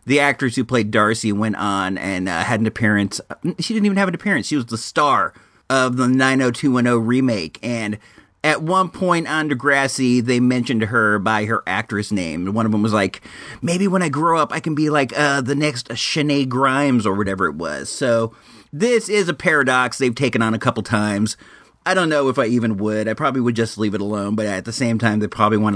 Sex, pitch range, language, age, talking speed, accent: male, 115-180 Hz, English, 30-49, 220 wpm, American